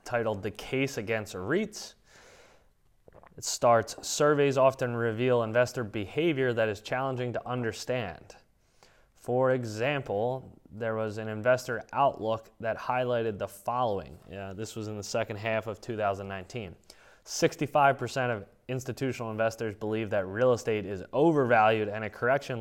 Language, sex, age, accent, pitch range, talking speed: English, male, 20-39, American, 105-125 Hz, 135 wpm